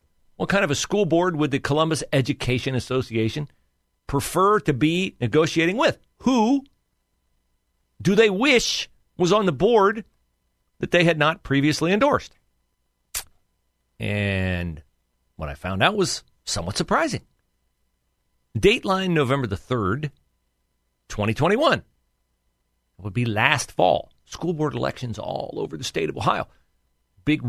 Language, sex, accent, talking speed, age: English, male, American, 125 wpm, 40-59